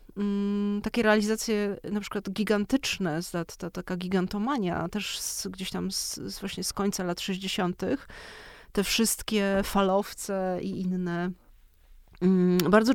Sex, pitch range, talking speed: female, 185-215 Hz, 125 wpm